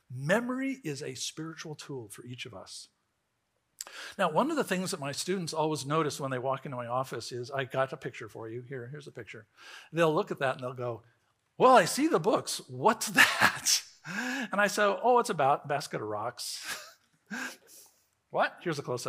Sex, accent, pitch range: male, American, 135-180 Hz